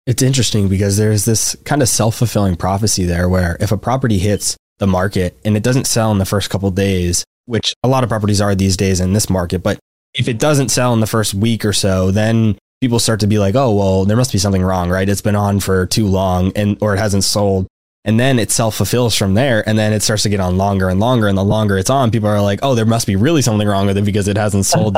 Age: 20-39